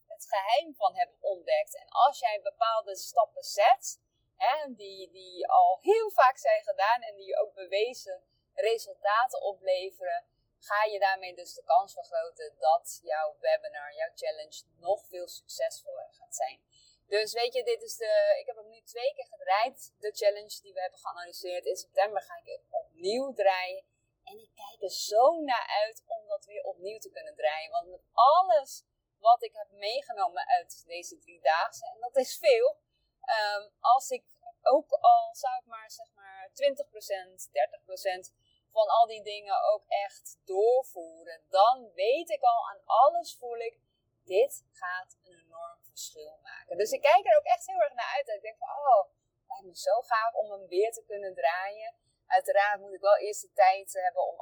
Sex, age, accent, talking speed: female, 30-49, Dutch, 180 wpm